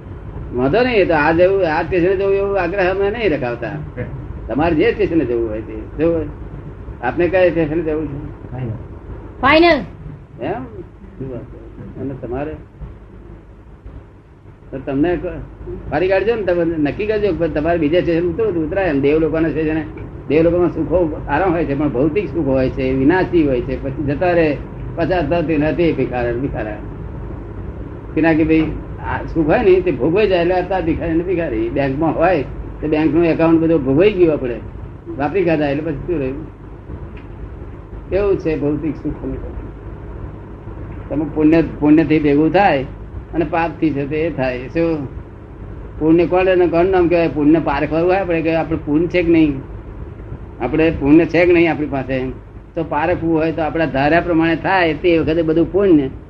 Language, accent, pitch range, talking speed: Gujarati, native, 120-170 Hz, 110 wpm